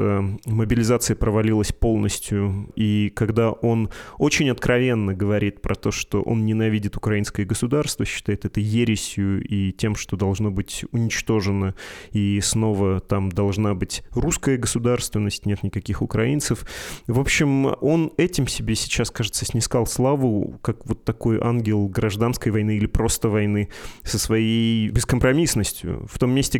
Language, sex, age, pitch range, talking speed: Russian, male, 20-39, 105-125 Hz, 135 wpm